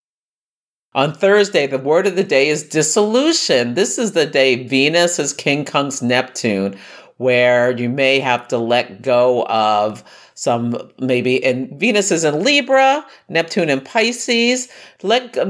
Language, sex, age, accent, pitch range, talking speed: English, male, 50-69, American, 125-175 Hz, 145 wpm